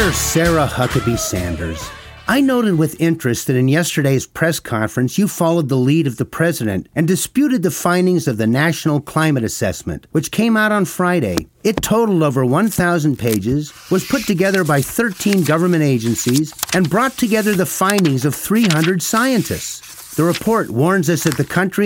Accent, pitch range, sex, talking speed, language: American, 145-195 Hz, male, 165 wpm, English